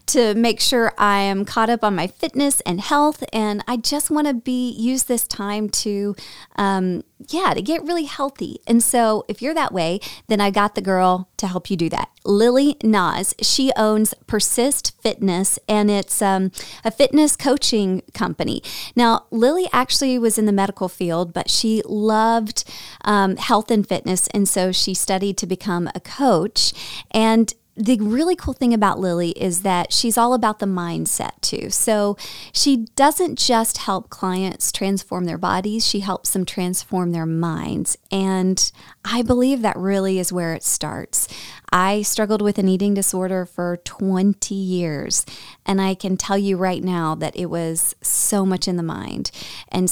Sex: female